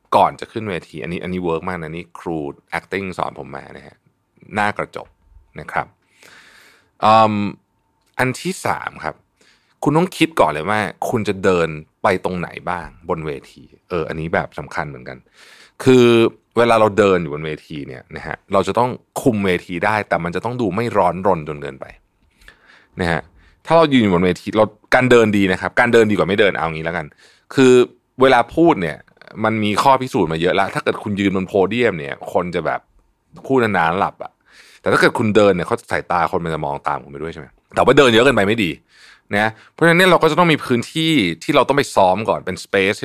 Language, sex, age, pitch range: Thai, male, 20-39, 90-130 Hz